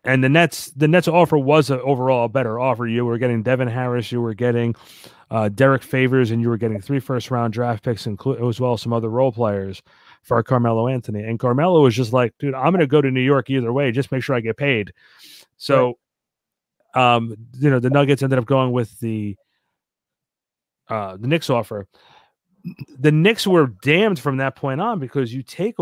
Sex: male